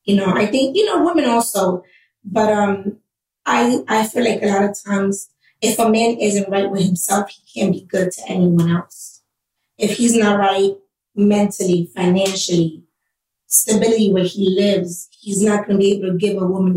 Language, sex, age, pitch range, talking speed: English, female, 20-39, 185-225 Hz, 185 wpm